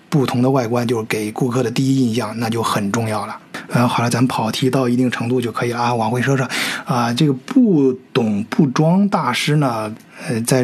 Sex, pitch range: male, 125-165 Hz